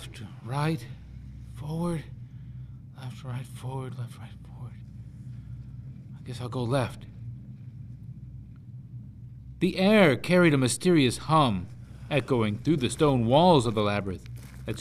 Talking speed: 120 wpm